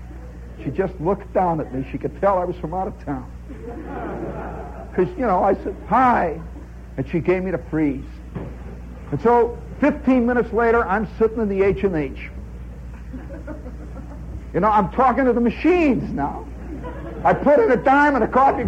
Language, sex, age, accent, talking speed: English, male, 60-79, American, 175 wpm